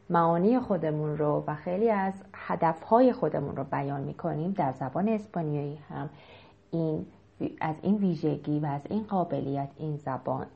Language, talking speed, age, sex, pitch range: Persian, 140 wpm, 30-49, female, 150-205 Hz